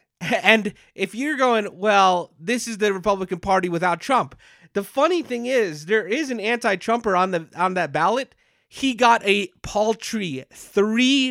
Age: 30-49